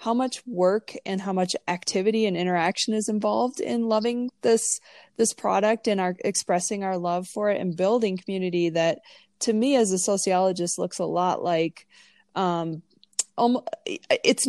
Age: 20-39